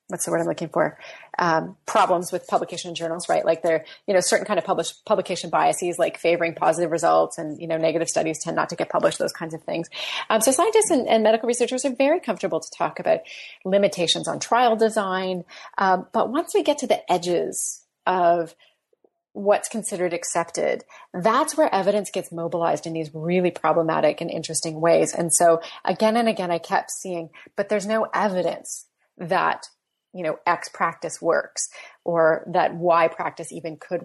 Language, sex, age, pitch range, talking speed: English, female, 30-49, 170-220 Hz, 185 wpm